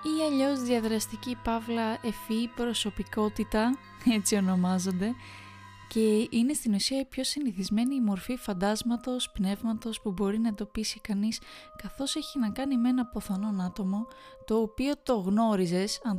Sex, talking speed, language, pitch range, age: female, 135 wpm, Greek, 205-260 Hz, 20-39